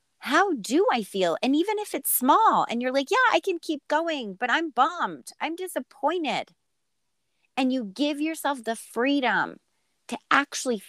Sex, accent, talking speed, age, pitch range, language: female, American, 165 wpm, 30-49, 190-260 Hz, English